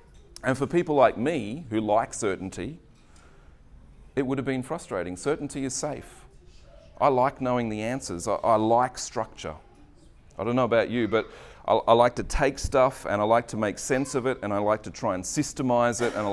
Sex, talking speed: male, 200 wpm